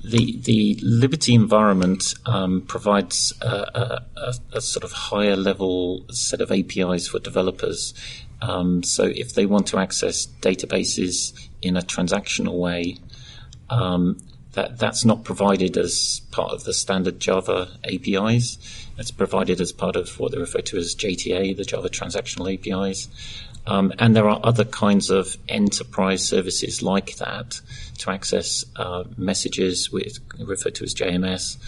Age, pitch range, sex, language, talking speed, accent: 40-59, 90-115 Hz, male, English, 145 wpm, British